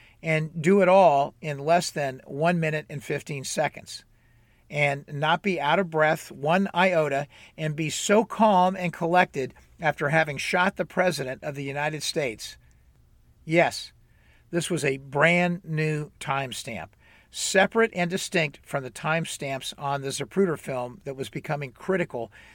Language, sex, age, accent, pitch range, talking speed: English, male, 50-69, American, 135-180 Hz, 155 wpm